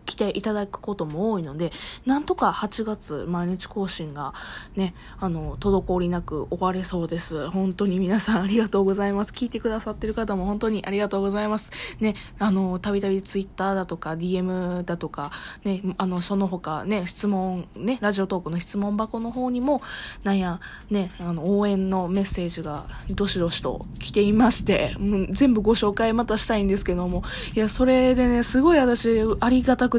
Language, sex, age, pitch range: Japanese, female, 20-39, 180-220 Hz